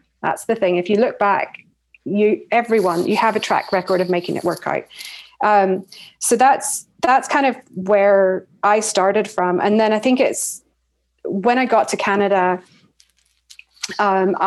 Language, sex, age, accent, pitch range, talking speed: English, female, 30-49, British, 180-210 Hz, 165 wpm